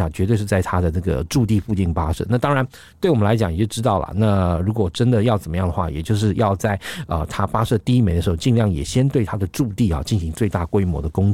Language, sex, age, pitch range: Chinese, male, 50-69, 95-120 Hz